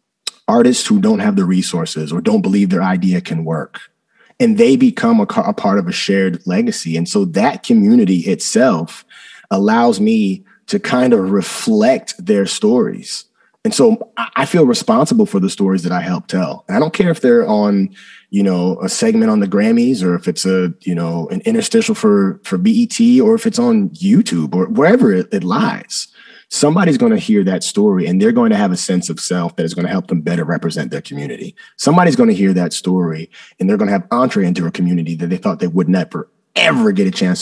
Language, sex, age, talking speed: English, male, 30-49, 215 wpm